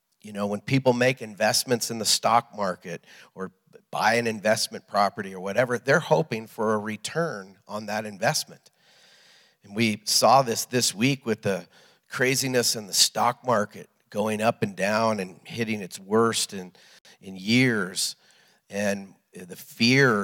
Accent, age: American, 50-69